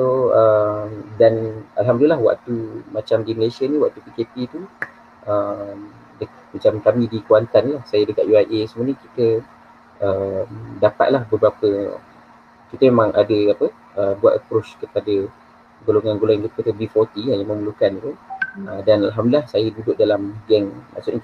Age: 20-39